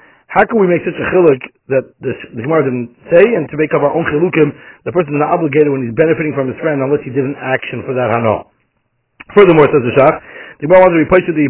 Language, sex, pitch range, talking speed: English, male, 145-180 Hz, 255 wpm